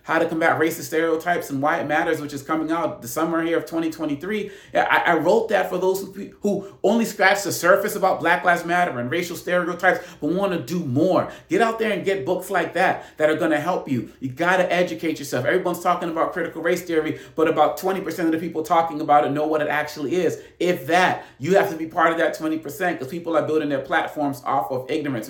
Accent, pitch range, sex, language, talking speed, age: American, 140-170 Hz, male, English, 230 wpm, 40-59